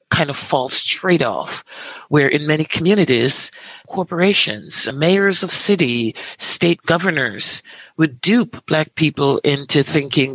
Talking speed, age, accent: 120 wpm, 50-69, American